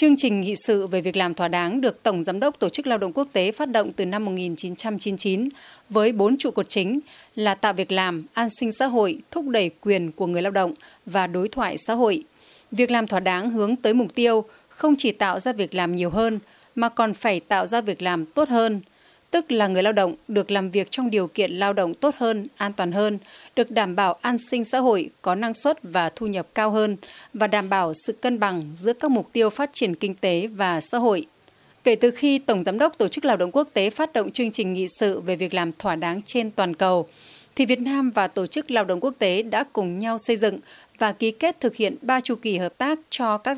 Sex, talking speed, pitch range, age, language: female, 245 wpm, 195-250 Hz, 20-39, Vietnamese